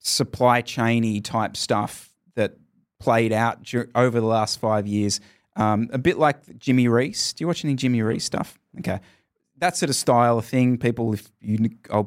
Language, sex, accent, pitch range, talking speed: English, male, Australian, 115-155 Hz, 180 wpm